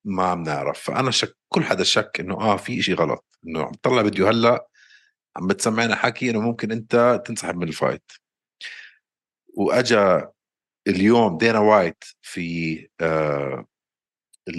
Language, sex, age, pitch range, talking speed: Arabic, male, 50-69, 90-120 Hz, 130 wpm